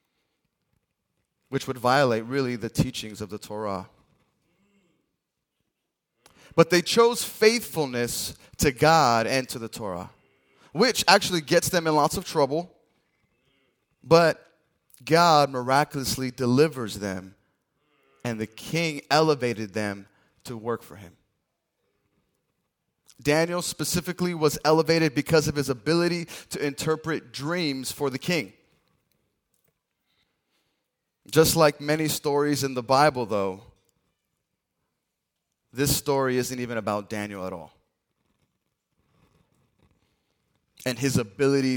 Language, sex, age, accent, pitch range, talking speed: English, male, 20-39, American, 120-150 Hz, 105 wpm